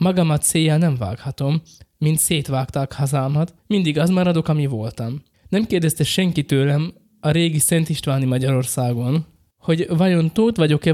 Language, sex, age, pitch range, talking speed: Hungarian, male, 20-39, 120-155 Hz, 135 wpm